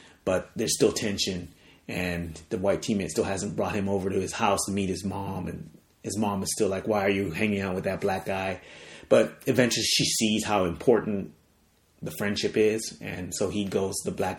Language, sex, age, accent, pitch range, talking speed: English, male, 30-49, American, 90-110 Hz, 210 wpm